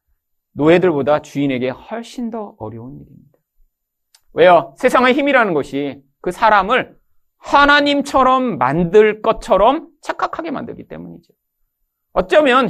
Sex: male